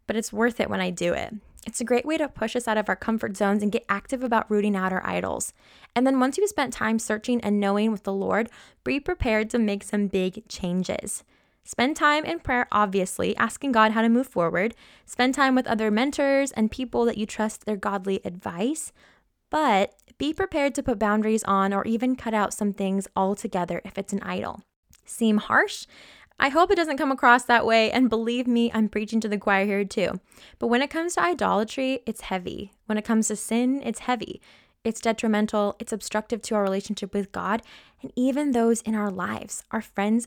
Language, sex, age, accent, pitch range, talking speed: English, female, 10-29, American, 205-250 Hz, 210 wpm